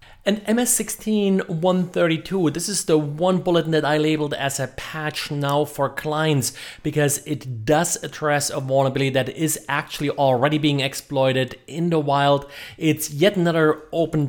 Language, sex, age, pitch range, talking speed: English, male, 30-49, 140-160 Hz, 145 wpm